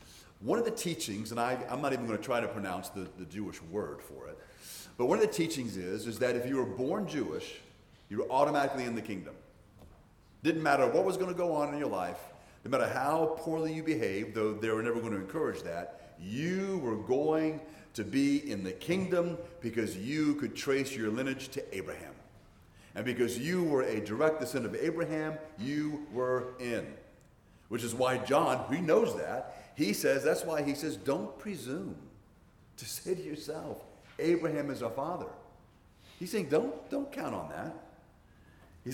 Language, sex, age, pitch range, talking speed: English, male, 40-59, 115-165 Hz, 190 wpm